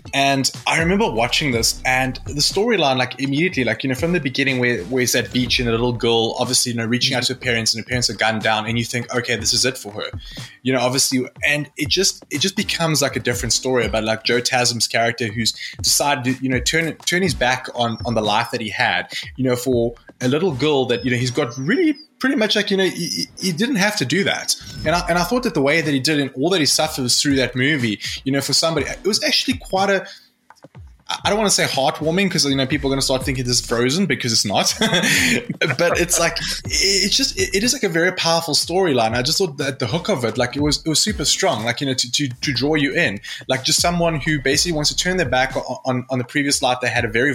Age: 20-39